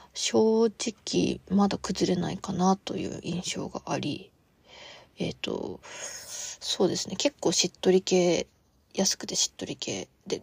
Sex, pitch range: female, 190-270 Hz